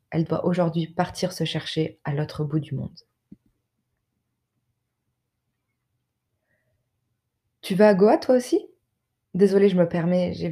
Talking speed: 125 wpm